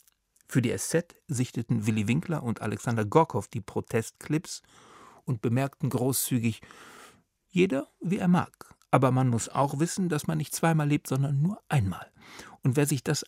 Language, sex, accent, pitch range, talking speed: German, male, German, 115-155 Hz, 160 wpm